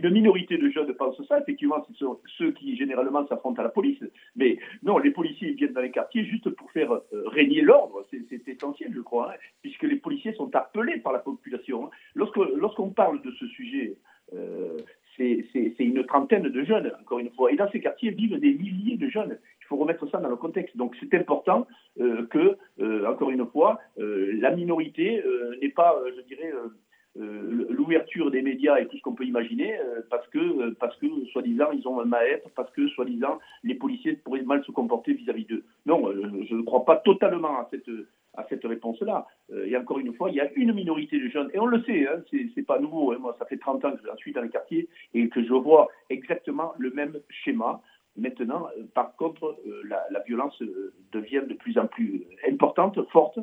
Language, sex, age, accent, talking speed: Italian, male, 50-69, French, 220 wpm